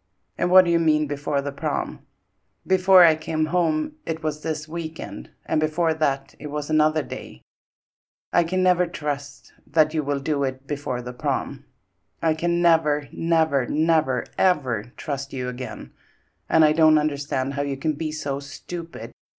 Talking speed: 165 wpm